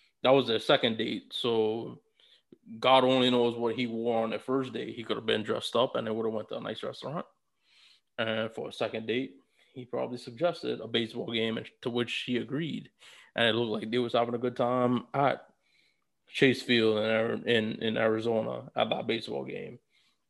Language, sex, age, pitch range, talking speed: English, male, 20-39, 115-130 Hz, 200 wpm